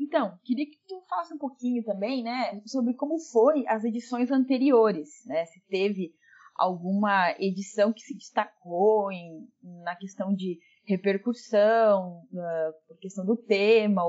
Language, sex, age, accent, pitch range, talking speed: Portuguese, female, 20-39, Brazilian, 195-245 Hz, 140 wpm